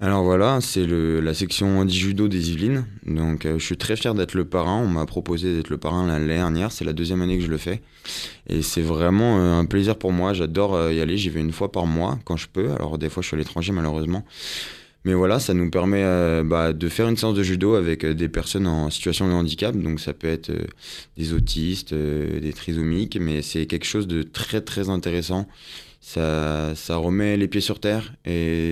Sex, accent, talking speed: male, French, 225 wpm